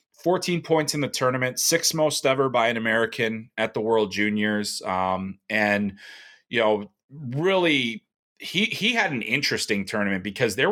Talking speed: 155 wpm